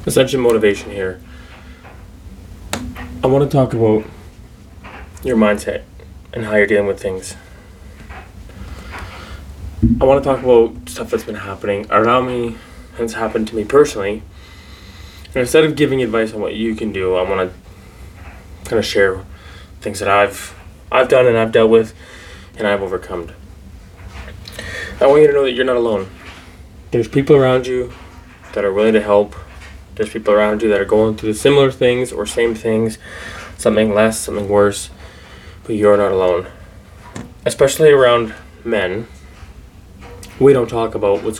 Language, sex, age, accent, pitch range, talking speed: English, male, 20-39, American, 90-110 Hz, 155 wpm